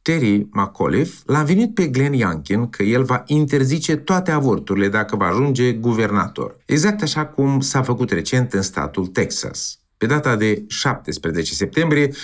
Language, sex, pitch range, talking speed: Romanian, male, 110-160 Hz, 150 wpm